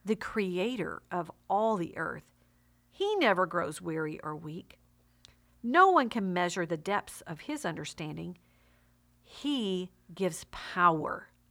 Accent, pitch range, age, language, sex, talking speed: American, 175-240 Hz, 50-69, English, female, 125 wpm